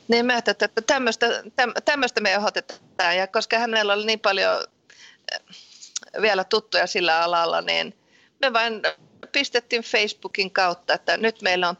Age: 30-49